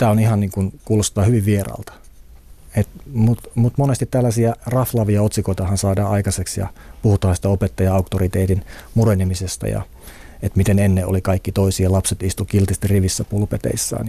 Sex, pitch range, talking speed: male, 95-110 Hz, 130 wpm